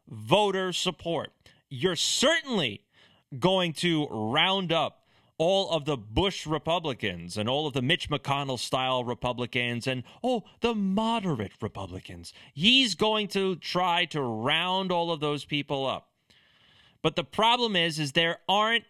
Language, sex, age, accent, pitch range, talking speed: English, male, 30-49, American, 125-185 Hz, 140 wpm